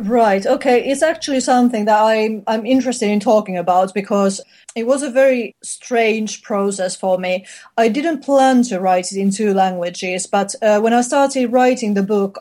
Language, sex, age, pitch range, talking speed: English, female, 30-49, 195-225 Hz, 185 wpm